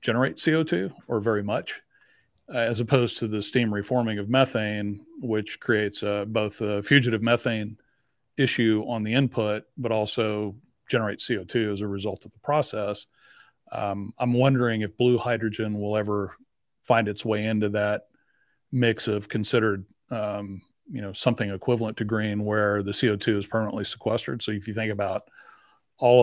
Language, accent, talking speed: English, American, 160 wpm